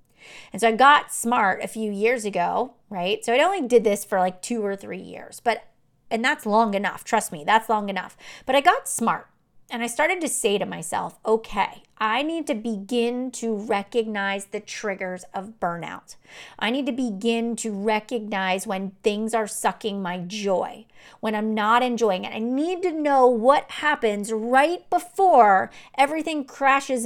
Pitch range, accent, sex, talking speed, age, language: 195-250 Hz, American, female, 175 wpm, 30-49, English